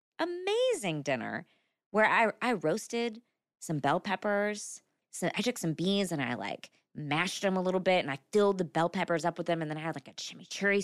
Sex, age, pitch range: female, 20-39, 185-255 Hz